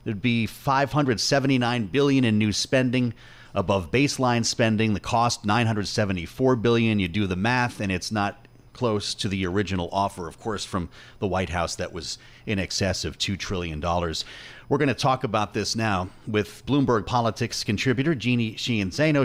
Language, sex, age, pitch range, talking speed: English, male, 30-49, 105-125 Hz, 160 wpm